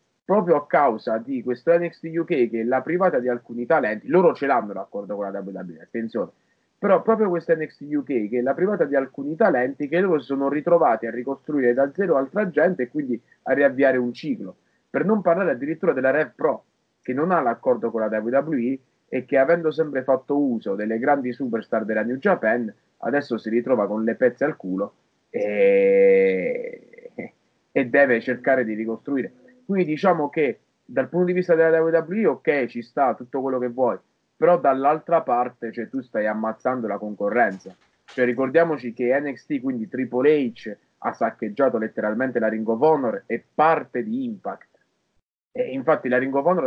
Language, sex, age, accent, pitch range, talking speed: Italian, male, 30-49, native, 120-165 Hz, 180 wpm